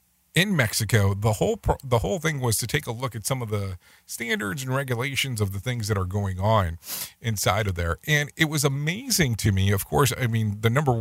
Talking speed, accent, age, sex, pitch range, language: 225 wpm, American, 40-59, male, 90-120 Hz, English